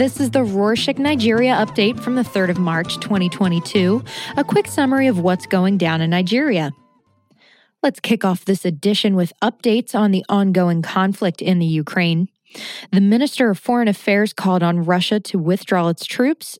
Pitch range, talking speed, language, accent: 180-220 Hz, 170 wpm, English, American